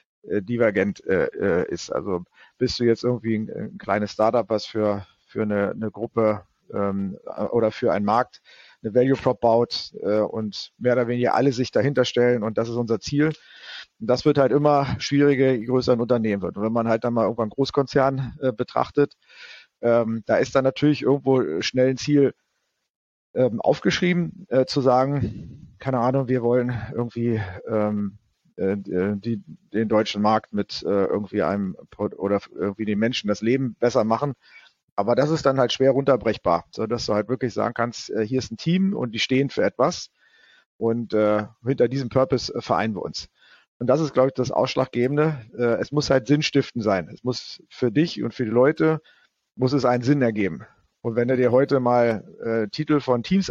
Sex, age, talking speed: male, 40-59, 180 wpm